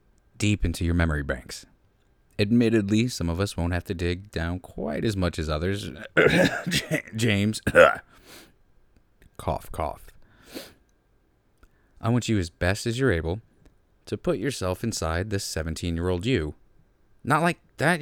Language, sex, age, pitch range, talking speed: English, male, 30-49, 90-145 Hz, 140 wpm